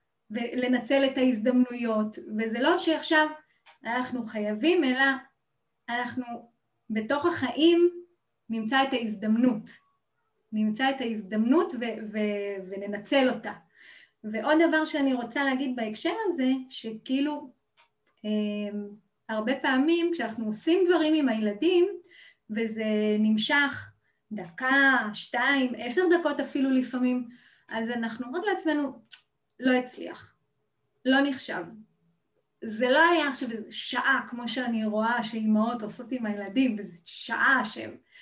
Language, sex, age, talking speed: Hebrew, female, 20-39, 110 wpm